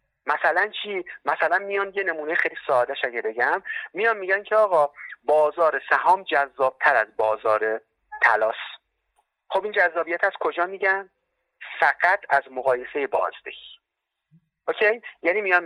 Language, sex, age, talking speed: Persian, male, 30-49, 125 wpm